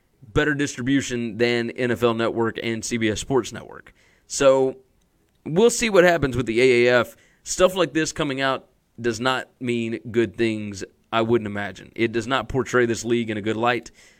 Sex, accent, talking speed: male, American, 170 wpm